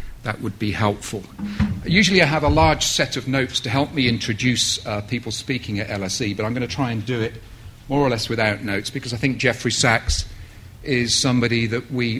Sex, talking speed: male, 210 wpm